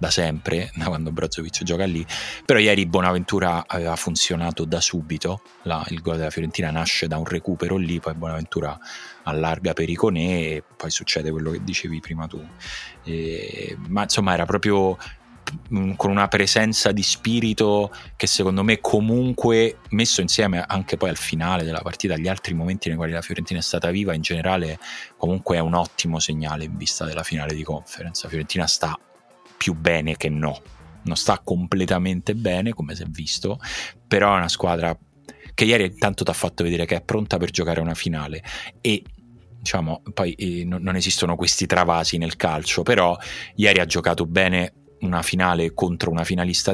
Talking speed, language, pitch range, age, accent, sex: 175 wpm, Italian, 80-95 Hz, 30-49, native, male